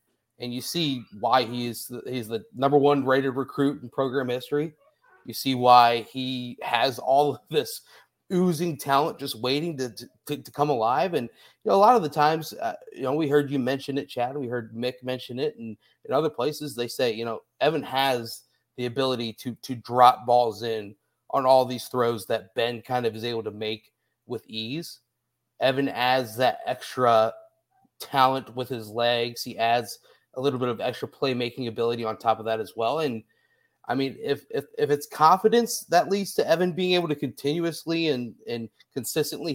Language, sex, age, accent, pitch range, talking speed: English, male, 30-49, American, 120-145 Hz, 195 wpm